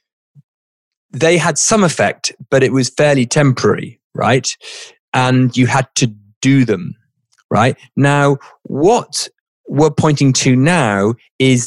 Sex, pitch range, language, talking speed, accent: male, 115-150 Hz, English, 125 wpm, British